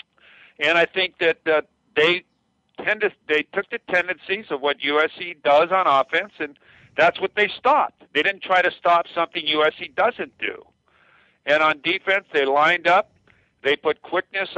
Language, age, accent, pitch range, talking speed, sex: English, 60-79, American, 130-160 Hz, 165 wpm, male